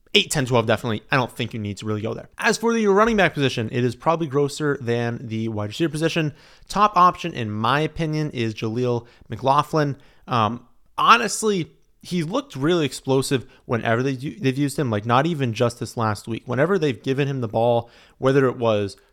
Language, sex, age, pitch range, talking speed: English, male, 30-49, 120-150 Hz, 195 wpm